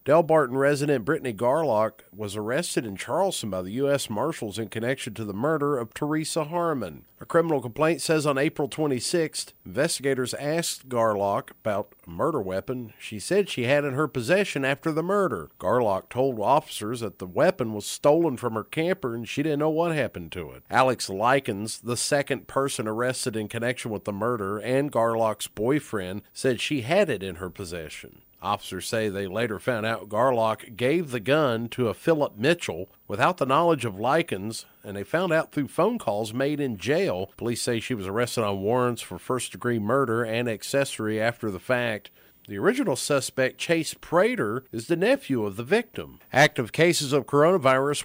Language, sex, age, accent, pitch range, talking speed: English, male, 50-69, American, 110-145 Hz, 180 wpm